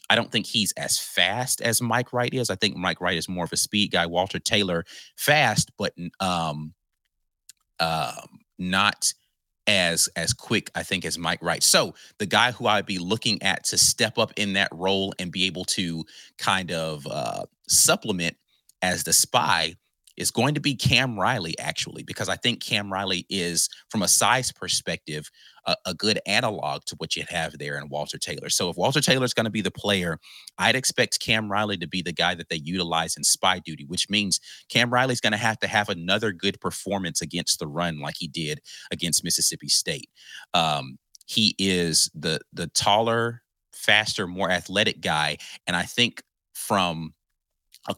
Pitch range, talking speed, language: 85-105 Hz, 190 wpm, English